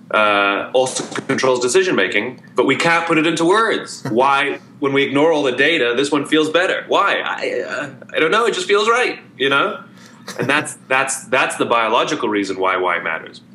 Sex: male